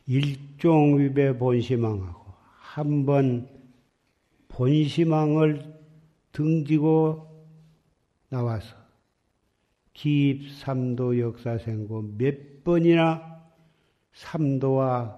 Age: 50-69